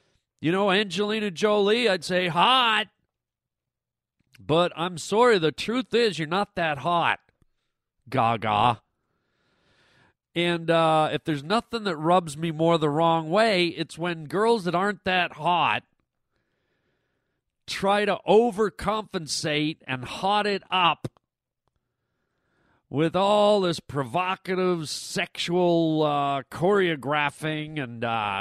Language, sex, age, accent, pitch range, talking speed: English, male, 40-59, American, 150-200 Hz, 110 wpm